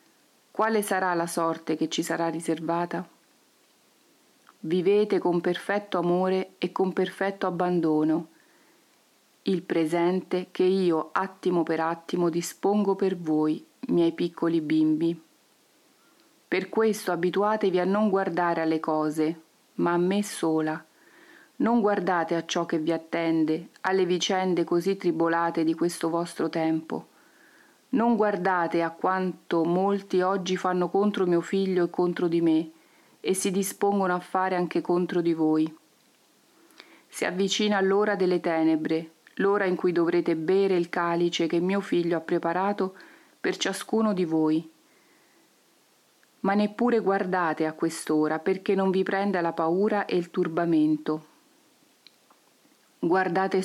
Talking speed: 130 wpm